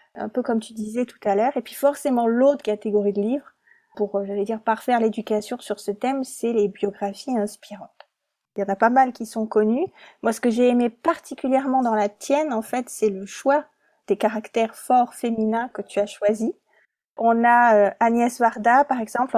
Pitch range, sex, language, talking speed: 220-270 Hz, female, French, 200 wpm